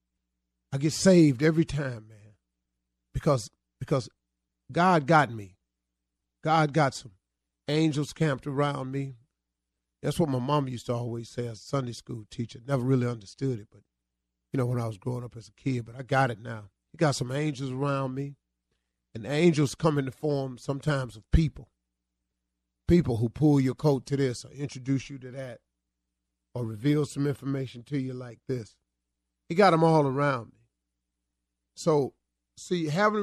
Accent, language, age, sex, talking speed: American, English, 30-49, male, 170 wpm